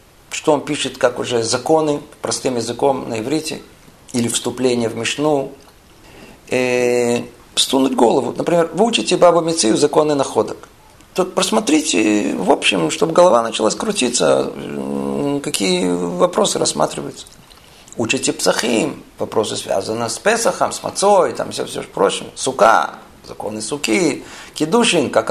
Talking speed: 120 wpm